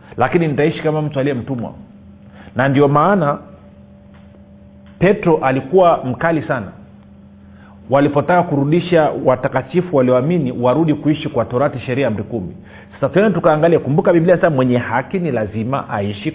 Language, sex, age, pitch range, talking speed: Swahili, male, 40-59, 110-155 Hz, 125 wpm